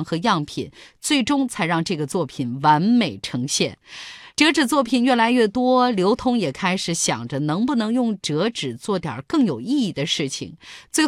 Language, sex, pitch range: Chinese, female, 155-250 Hz